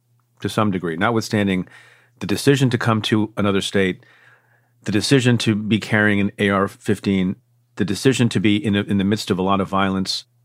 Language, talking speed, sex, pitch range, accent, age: English, 185 wpm, male, 100-120 Hz, American, 40-59